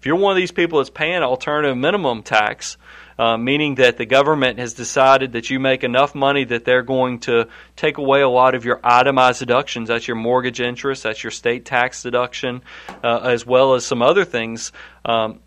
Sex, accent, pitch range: male, American, 125-155 Hz